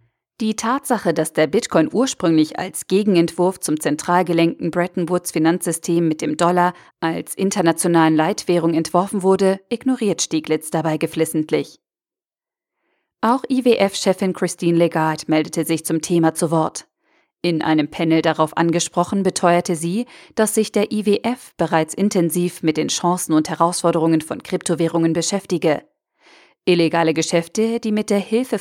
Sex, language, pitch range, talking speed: female, German, 165-205 Hz, 130 wpm